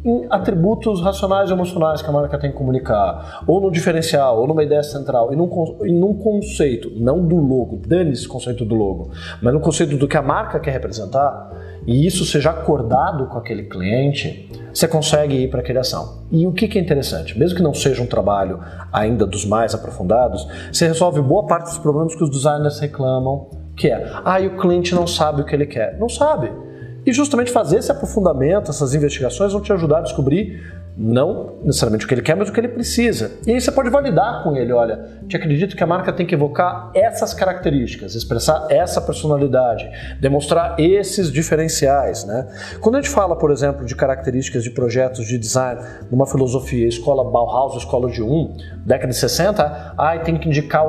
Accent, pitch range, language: Brazilian, 120-170 Hz, Portuguese